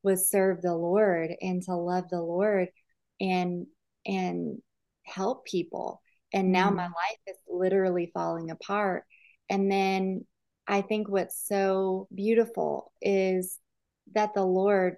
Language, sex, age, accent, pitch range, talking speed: English, female, 30-49, American, 180-205 Hz, 130 wpm